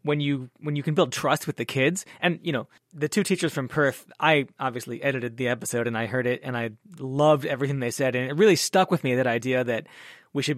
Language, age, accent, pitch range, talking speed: English, 20-39, American, 130-165 Hz, 250 wpm